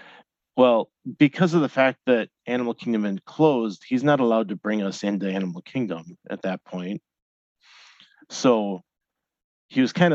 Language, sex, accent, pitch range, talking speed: English, male, American, 95-115 Hz, 150 wpm